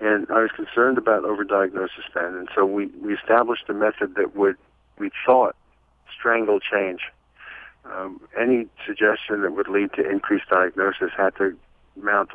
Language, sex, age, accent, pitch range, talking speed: English, male, 50-69, American, 100-130 Hz, 155 wpm